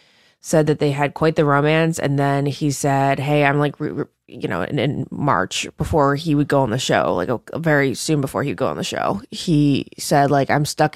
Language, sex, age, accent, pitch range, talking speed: English, female, 20-39, American, 140-165 Hz, 215 wpm